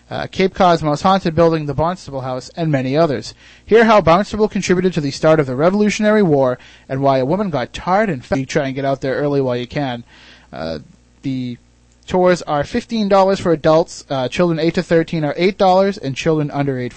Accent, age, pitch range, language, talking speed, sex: American, 30-49, 130-170 Hz, English, 210 wpm, male